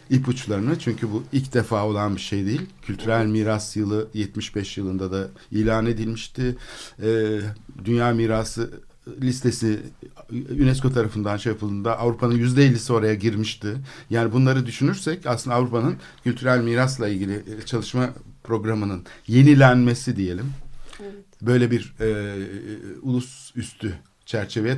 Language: Turkish